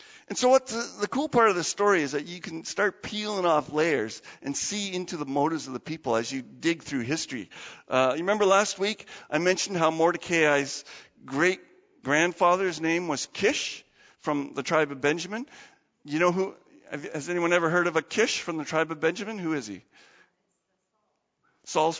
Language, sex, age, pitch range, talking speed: English, male, 50-69, 145-220 Hz, 190 wpm